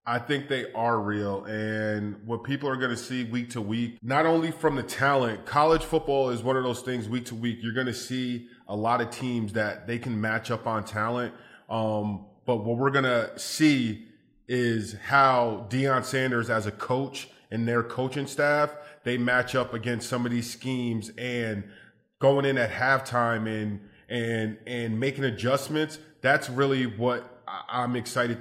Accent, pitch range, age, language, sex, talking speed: American, 115-140 Hz, 20-39, English, male, 180 wpm